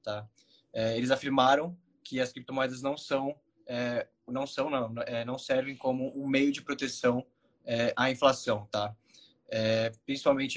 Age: 20-39